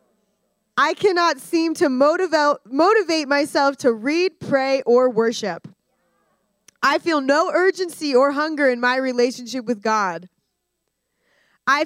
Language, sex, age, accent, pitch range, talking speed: English, female, 20-39, American, 225-310 Hz, 115 wpm